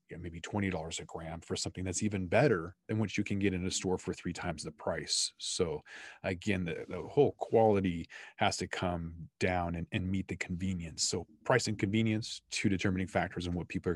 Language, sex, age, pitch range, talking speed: English, male, 30-49, 90-110 Hz, 205 wpm